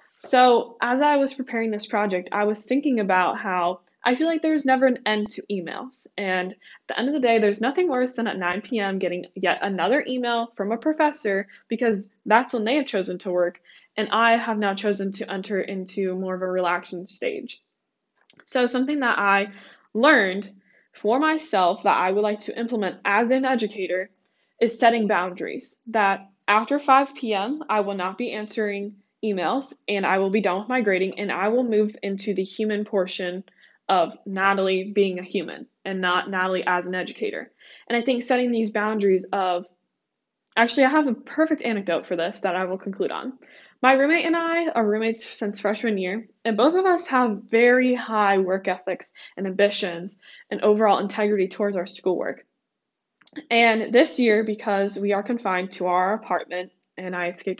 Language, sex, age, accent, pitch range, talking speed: English, female, 10-29, American, 190-245 Hz, 185 wpm